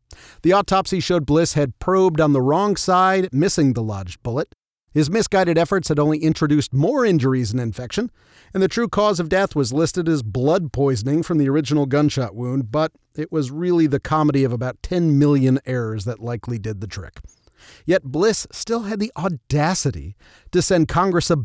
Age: 40-59